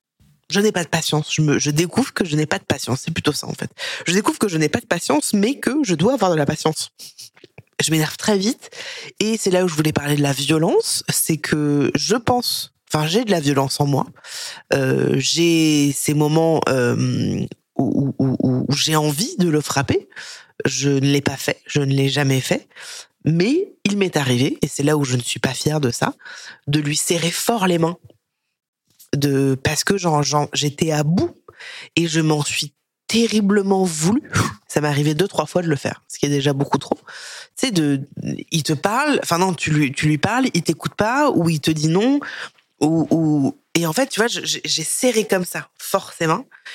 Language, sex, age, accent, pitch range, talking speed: French, female, 20-39, French, 145-185 Hz, 215 wpm